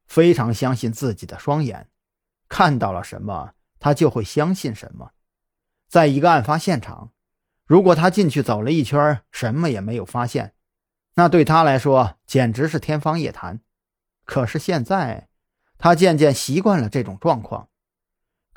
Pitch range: 105-160 Hz